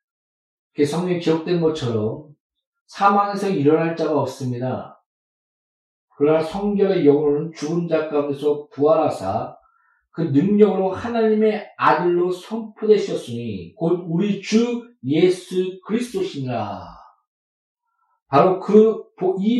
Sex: male